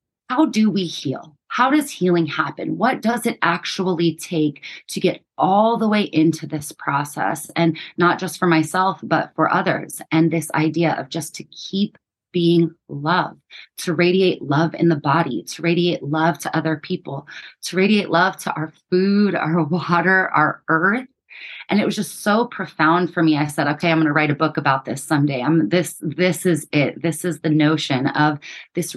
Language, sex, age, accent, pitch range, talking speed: English, female, 30-49, American, 160-205 Hz, 190 wpm